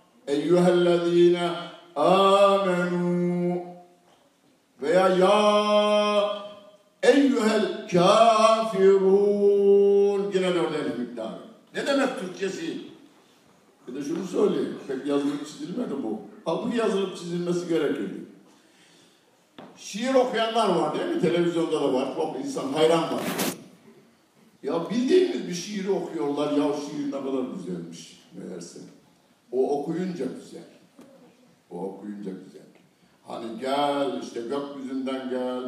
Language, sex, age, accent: Turkish, male, 60-79, native